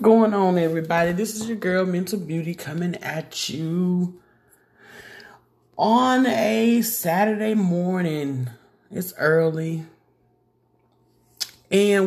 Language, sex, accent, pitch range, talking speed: English, male, American, 155-185 Hz, 95 wpm